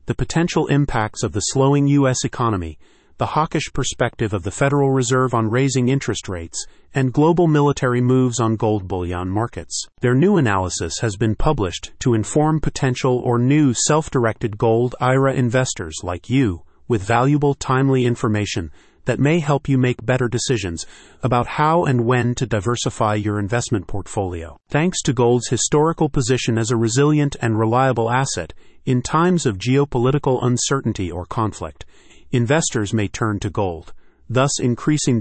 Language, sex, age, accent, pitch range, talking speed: English, male, 30-49, American, 105-135 Hz, 150 wpm